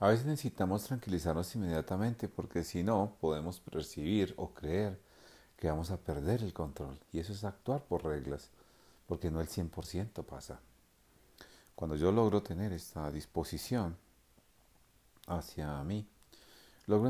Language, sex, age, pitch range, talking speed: Spanish, male, 40-59, 80-105 Hz, 135 wpm